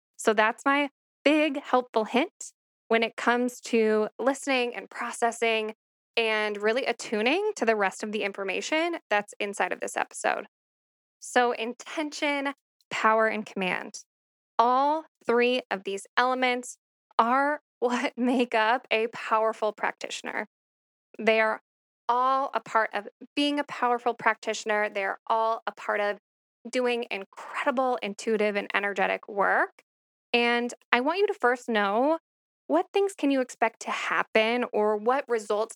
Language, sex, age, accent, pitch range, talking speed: English, female, 10-29, American, 215-260 Hz, 140 wpm